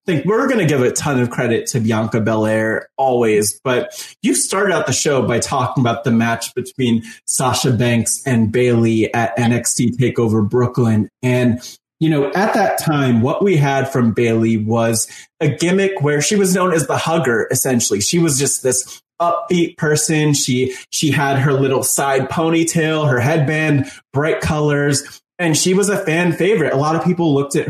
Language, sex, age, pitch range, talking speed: English, male, 20-39, 125-160 Hz, 185 wpm